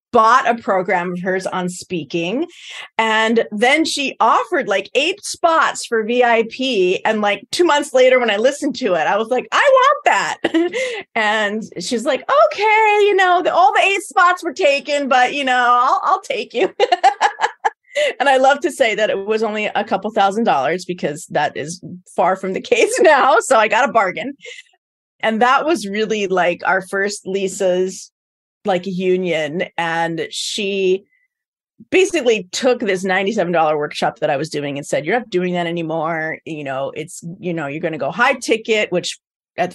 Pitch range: 185-305 Hz